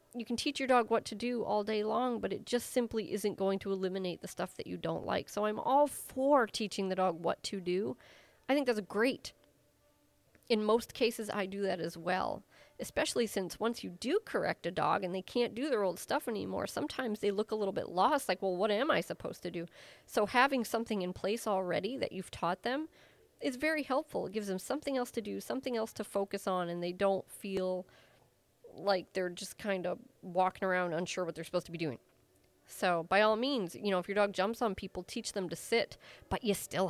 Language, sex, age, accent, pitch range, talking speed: English, female, 40-59, American, 185-240 Hz, 230 wpm